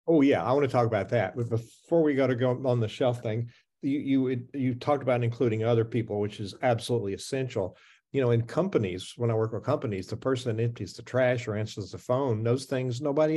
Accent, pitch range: American, 115-145 Hz